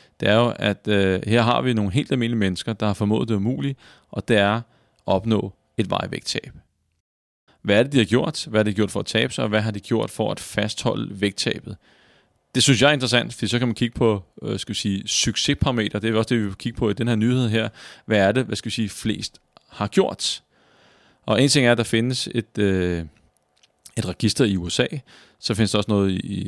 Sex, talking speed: male, 235 wpm